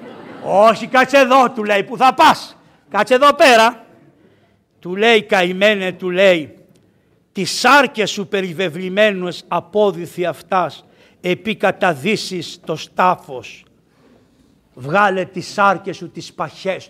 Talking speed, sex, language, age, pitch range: 150 wpm, male, Greek, 60-79, 170-235 Hz